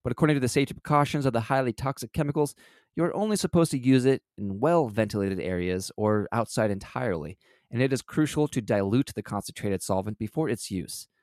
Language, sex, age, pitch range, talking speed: English, male, 20-39, 105-135 Hz, 185 wpm